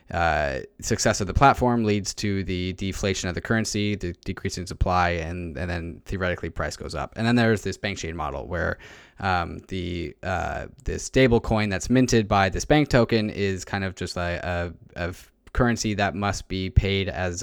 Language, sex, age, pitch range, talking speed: English, male, 20-39, 90-105 Hz, 190 wpm